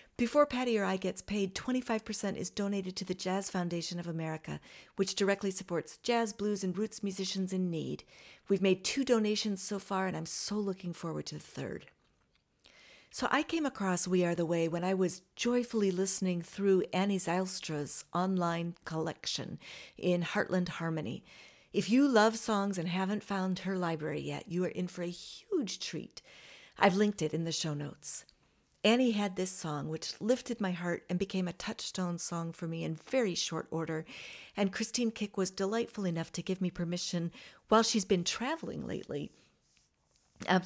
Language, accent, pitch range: English, American, 175-220 Hz